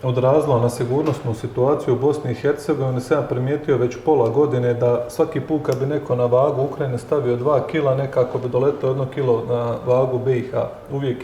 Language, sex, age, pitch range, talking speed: Croatian, male, 30-49, 125-150 Hz, 180 wpm